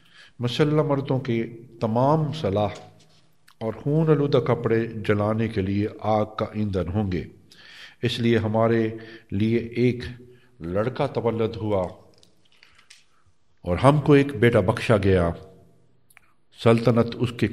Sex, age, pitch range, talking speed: male, 50-69, 95-120 Hz, 105 wpm